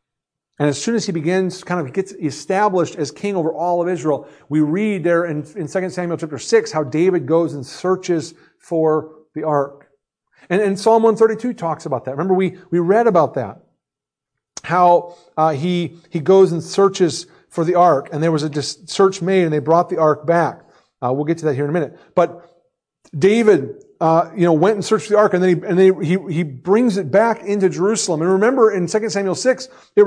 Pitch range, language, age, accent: 165-225 Hz, English, 40-59, American